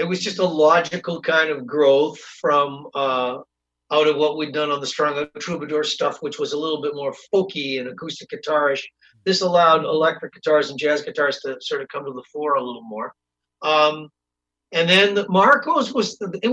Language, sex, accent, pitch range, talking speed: English, male, American, 150-200 Hz, 190 wpm